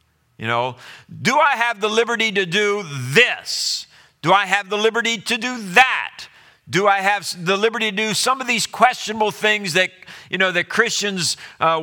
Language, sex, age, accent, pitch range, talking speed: English, male, 50-69, American, 150-230 Hz, 185 wpm